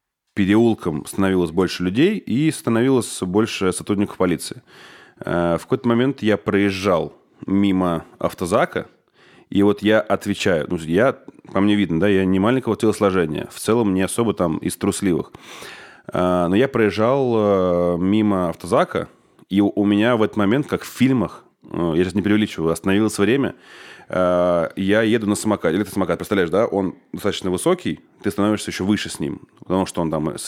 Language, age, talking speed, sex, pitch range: Russian, 30-49, 155 wpm, male, 85-105 Hz